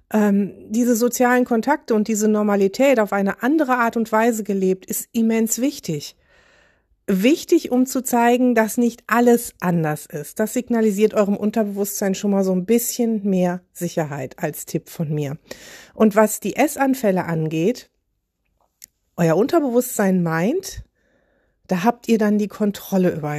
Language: German